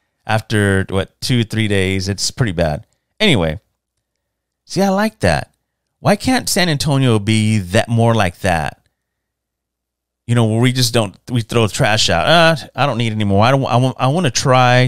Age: 30-49